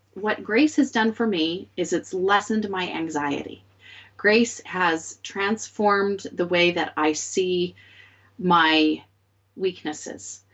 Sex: female